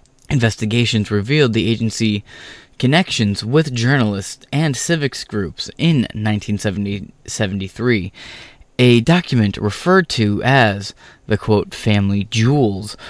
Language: English